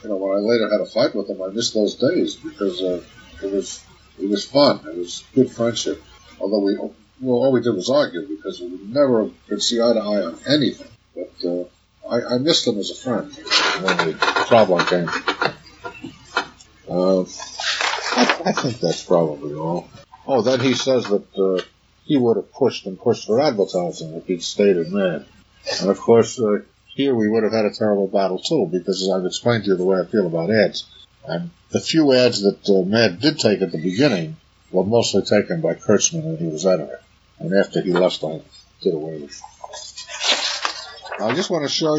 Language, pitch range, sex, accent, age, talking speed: English, 95-125 Hz, male, American, 50-69, 205 wpm